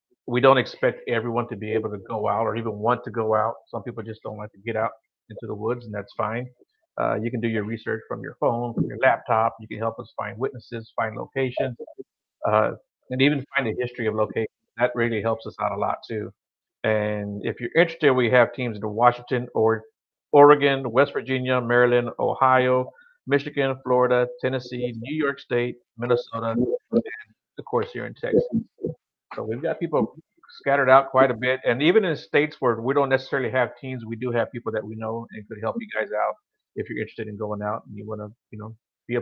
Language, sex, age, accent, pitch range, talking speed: English, male, 50-69, American, 110-130 Hz, 210 wpm